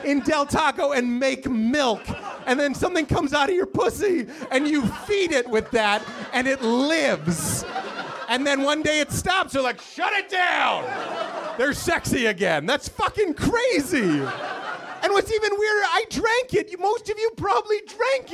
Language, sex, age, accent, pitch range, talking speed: English, male, 30-49, American, 225-335 Hz, 170 wpm